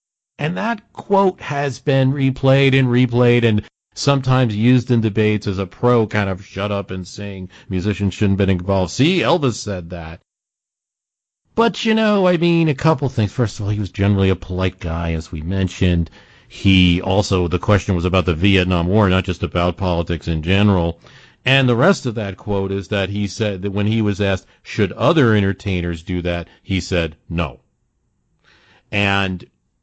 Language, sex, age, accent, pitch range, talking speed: English, male, 40-59, American, 95-120 Hz, 180 wpm